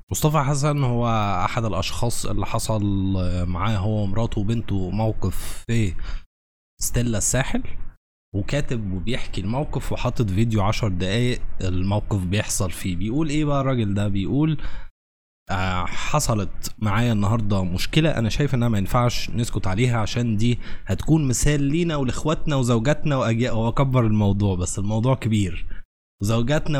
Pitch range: 100-135 Hz